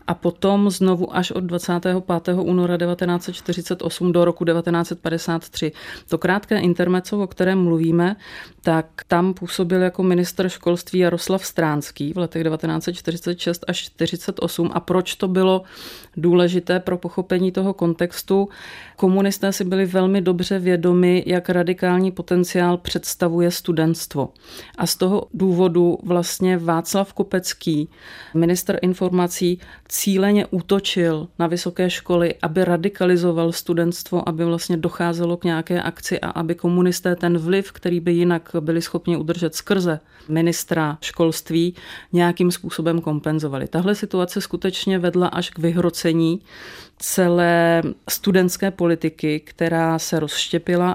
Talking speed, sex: 120 wpm, female